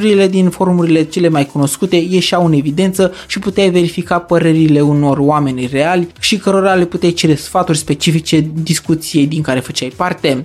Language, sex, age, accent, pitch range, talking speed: Romanian, male, 20-39, native, 145-185 Hz, 155 wpm